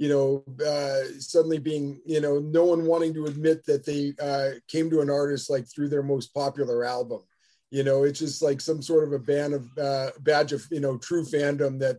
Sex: male